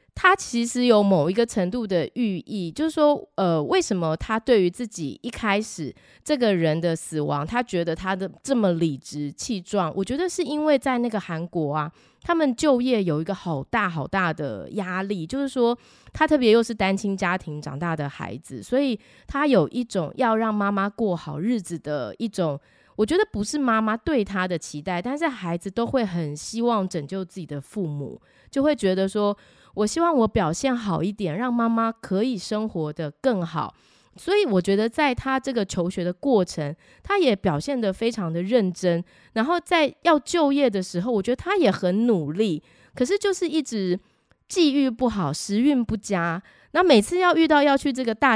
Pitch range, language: 175-255 Hz, Chinese